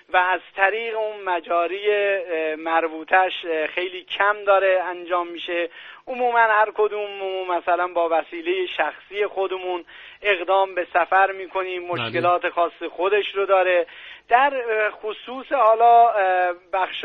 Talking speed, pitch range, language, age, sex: 115 wpm, 170-215 Hz, Persian, 40-59, male